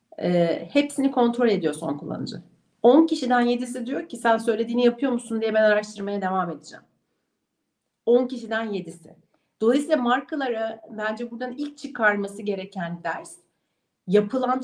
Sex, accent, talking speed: female, native, 130 wpm